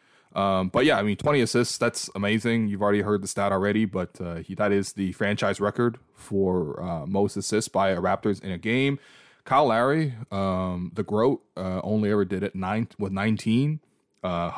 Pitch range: 95-115 Hz